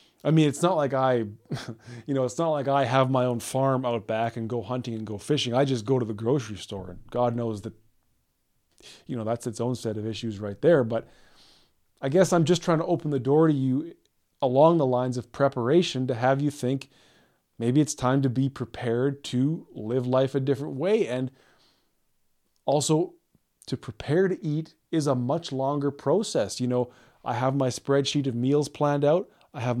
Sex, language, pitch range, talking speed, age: male, English, 125-165 Hz, 205 wpm, 20-39